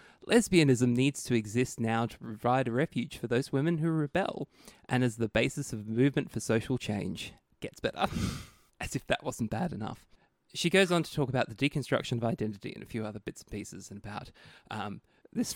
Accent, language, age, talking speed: Australian, English, 20-39, 200 wpm